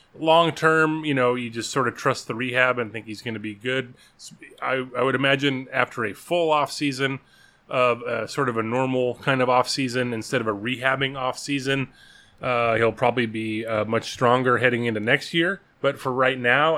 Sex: male